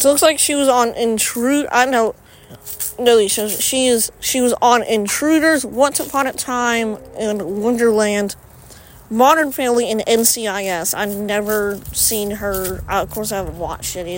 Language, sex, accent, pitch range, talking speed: English, female, American, 180-240 Hz, 160 wpm